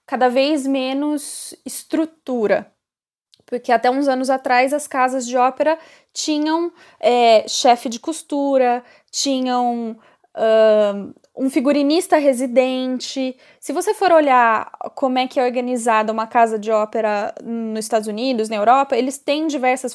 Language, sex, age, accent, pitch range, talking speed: Portuguese, female, 10-29, Brazilian, 240-300 Hz, 125 wpm